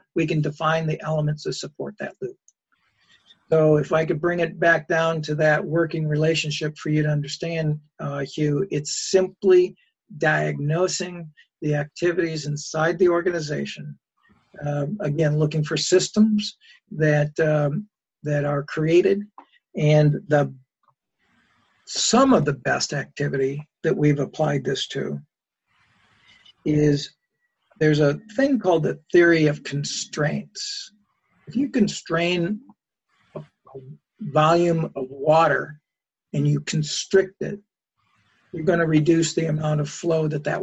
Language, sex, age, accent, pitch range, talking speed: English, male, 50-69, American, 150-180 Hz, 130 wpm